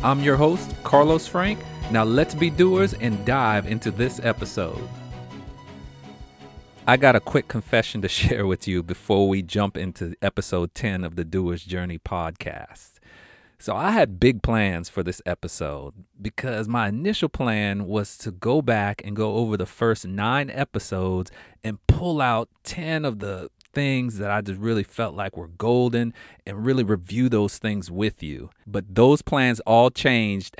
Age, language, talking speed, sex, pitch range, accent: 40-59, English, 165 wpm, male, 95-125 Hz, American